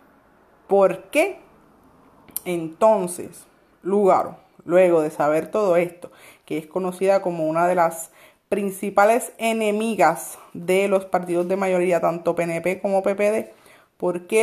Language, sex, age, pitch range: Spanish, female, 30-49, 180-235 Hz